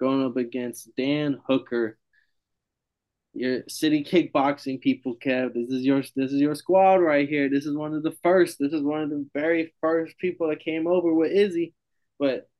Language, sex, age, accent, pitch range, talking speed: English, male, 20-39, American, 125-150 Hz, 185 wpm